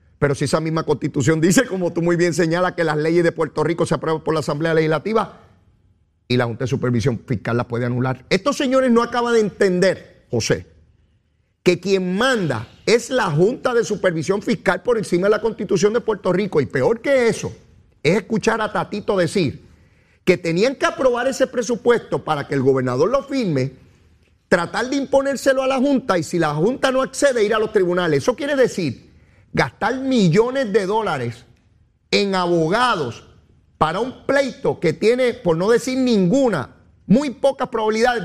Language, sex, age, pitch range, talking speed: Spanish, male, 40-59, 135-225 Hz, 180 wpm